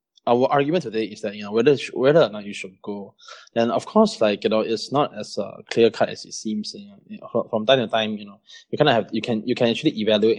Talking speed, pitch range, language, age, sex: 285 wpm, 105-125 Hz, English, 20-39, male